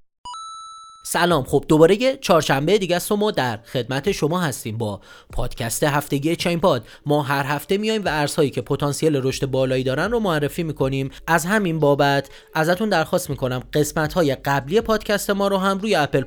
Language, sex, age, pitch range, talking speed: Persian, male, 30-49, 140-200 Hz, 170 wpm